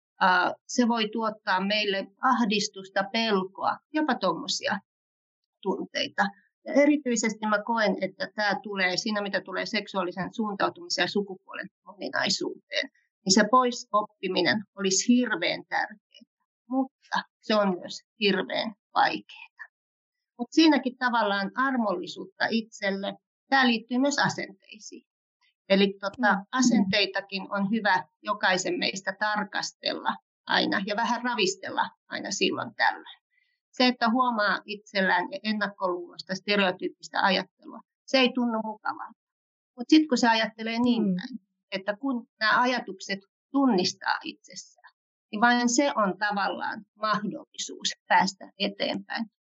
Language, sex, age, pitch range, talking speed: Finnish, female, 30-49, 200-255 Hz, 110 wpm